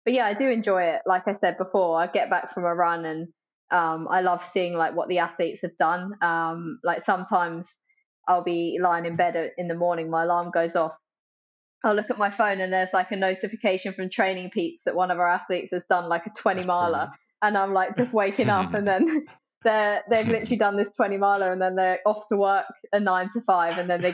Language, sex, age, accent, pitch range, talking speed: English, female, 20-39, British, 175-205 Hz, 235 wpm